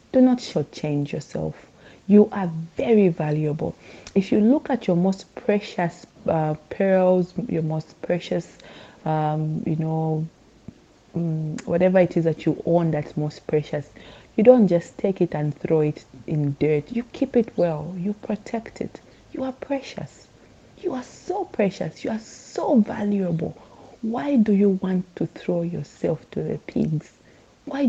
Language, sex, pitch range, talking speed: English, female, 165-225 Hz, 155 wpm